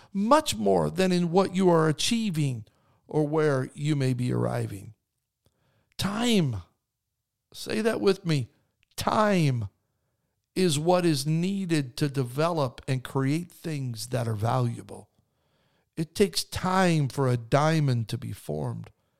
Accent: American